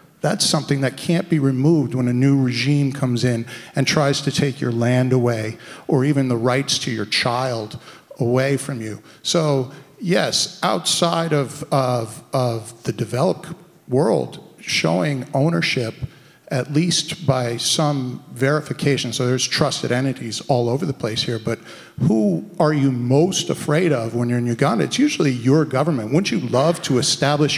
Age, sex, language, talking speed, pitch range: 50-69, male, English, 160 wpm, 125-160 Hz